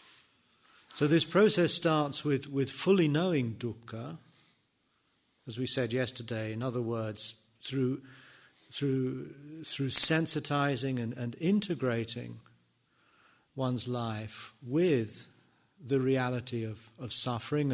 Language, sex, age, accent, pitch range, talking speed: English, male, 40-59, British, 120-145 Hz, 105 wpm